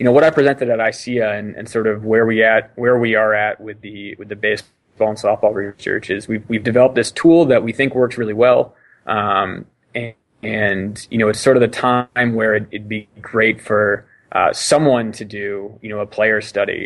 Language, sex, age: English, male, 20-39